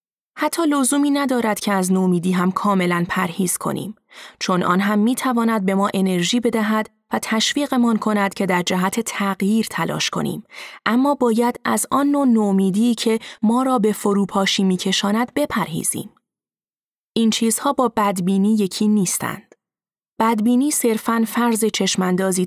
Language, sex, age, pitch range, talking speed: Persian, female, 30-49, 190-235 Hz, 135 wpm